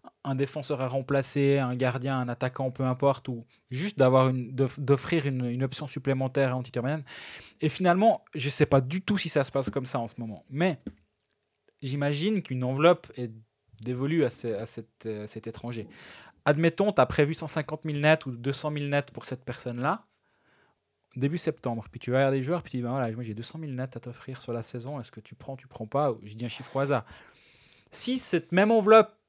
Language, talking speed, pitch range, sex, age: French, 215 wpm, 130-175 Hz, male, 20-39